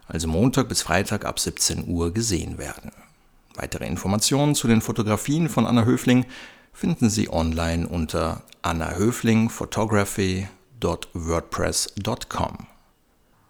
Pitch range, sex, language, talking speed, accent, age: 90-125 Hz, male, German, 100 wpm, German, 60-79